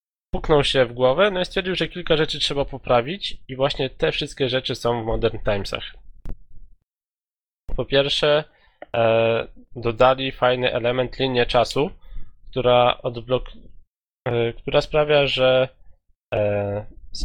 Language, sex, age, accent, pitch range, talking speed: Polish, male, 20-39, native, 115-130 Hz, 130 wpm